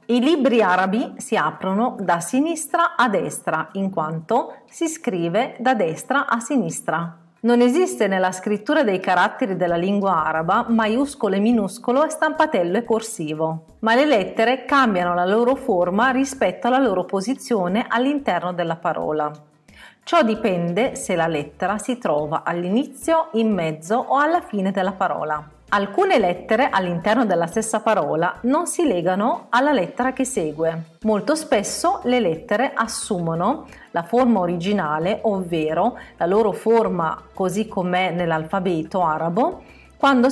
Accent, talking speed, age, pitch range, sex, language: native, 135 wpm, 40-59, 175-255 Hz, female, Italian